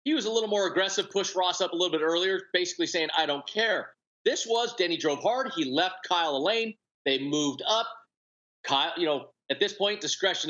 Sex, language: male, English